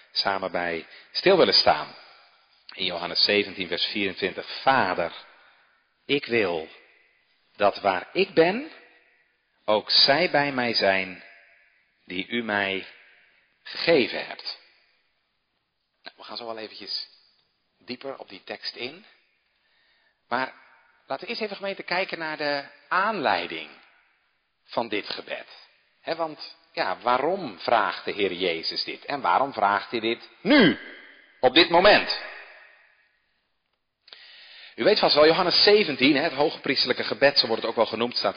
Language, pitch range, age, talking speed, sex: Dutch, 115-185 Hz, 50-69, 130 wpm, male